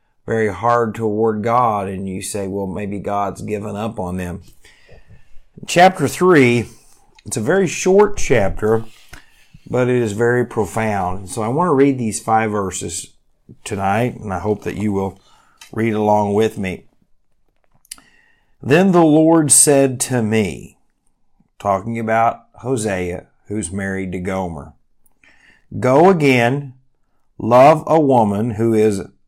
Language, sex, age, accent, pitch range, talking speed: English, male, 50-69, American, 105-130 Hz, 135 wpm